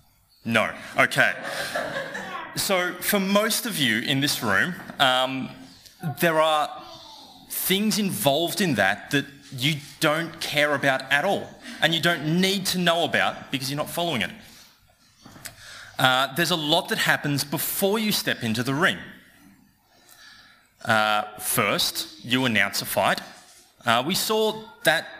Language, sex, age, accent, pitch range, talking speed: English, male, 20-39, Australian, 115-170 Hz, 140 wpm